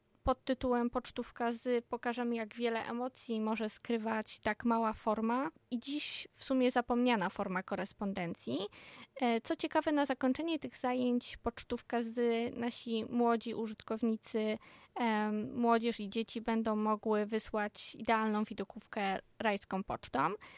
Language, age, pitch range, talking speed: Polish, 20-39, 220-260 Hz, 120 wpm